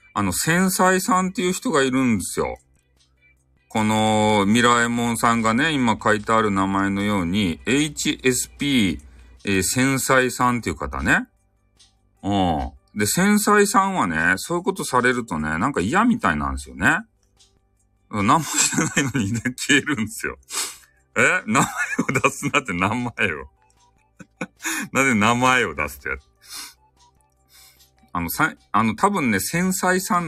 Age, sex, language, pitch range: 40-59, male, Japanese, 80-125 Hz